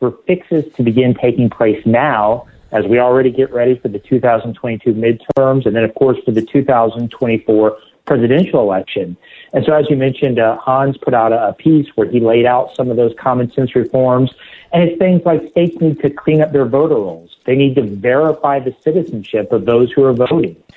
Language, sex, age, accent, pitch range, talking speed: English, male, 40-59, American, 120-145 Hz, 200 wpm